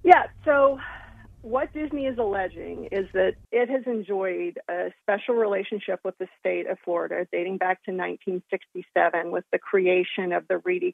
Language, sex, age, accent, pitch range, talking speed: English, female, 40-59, American, 180-235 Hz, 160 wpm